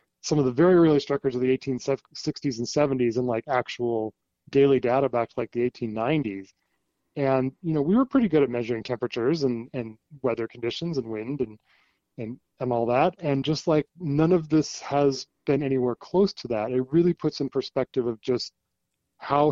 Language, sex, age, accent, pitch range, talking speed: English, male, 20-39, American, 125-155 Hz, 190 wpm